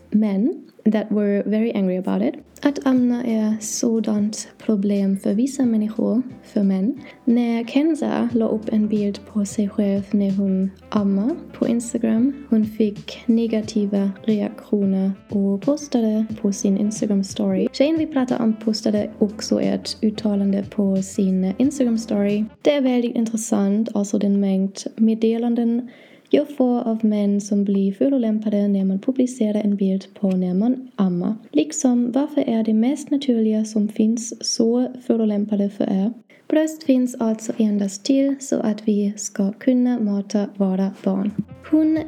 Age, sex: 20-39, female